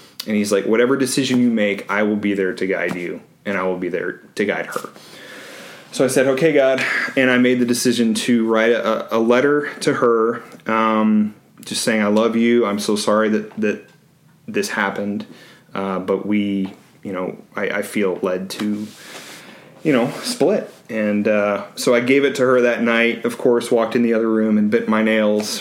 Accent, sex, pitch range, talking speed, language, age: American, male, 100-115 Hz, 200 wpm, English, 30-49